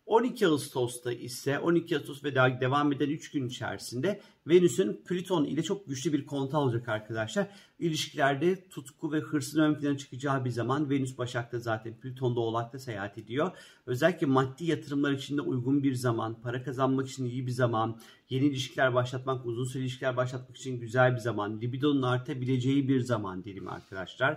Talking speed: 165 wpm